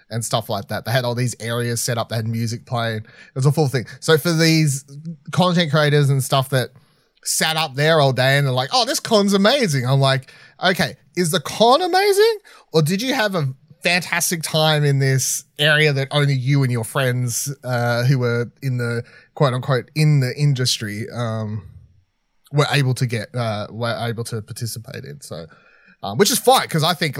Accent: Australian